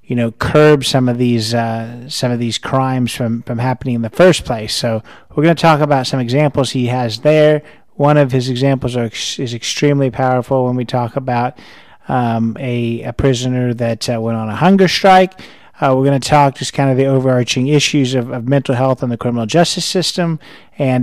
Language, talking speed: English, 210 wpm